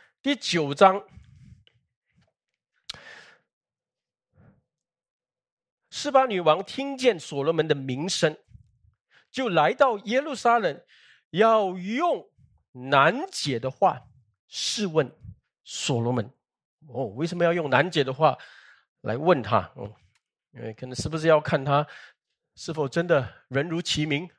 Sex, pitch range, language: male, 140-205 Hz, Chinese